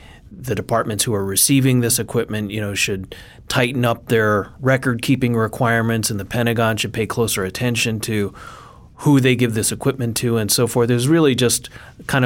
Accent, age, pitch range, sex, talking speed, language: American, 30-49, 110-130 Hz, male, 175 wpm, English